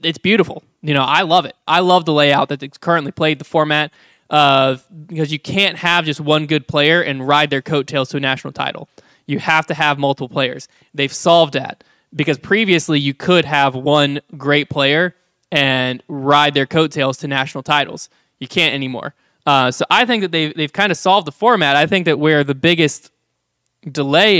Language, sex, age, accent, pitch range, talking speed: English, male, 20-39, American, 140-160 Hz, 195 wpm